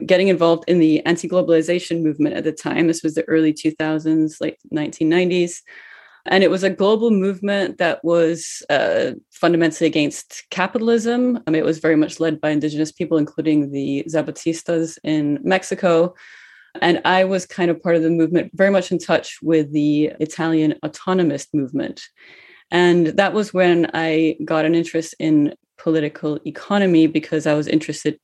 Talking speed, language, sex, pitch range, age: 160 wpm, English, female, 155-185 Hz, 30-49